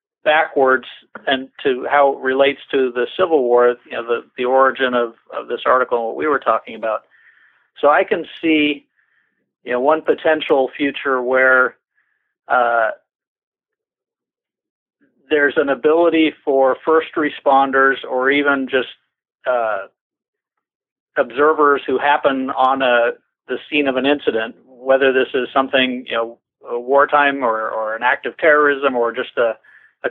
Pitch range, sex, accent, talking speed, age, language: 125-150 Hz, male, American, 150 wpm, 50-69, English